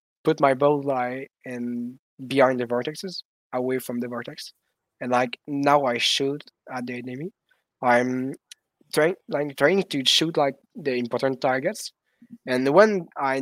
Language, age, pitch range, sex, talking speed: English, 20-39, 125-150 Hz, male, 155 wpm